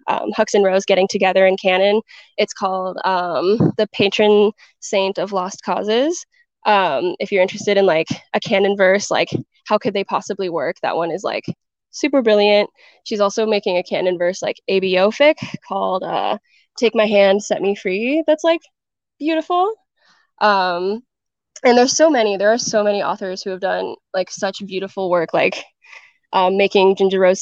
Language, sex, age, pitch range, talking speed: English, female, 10-29, 190-215 Hz, 175 wpm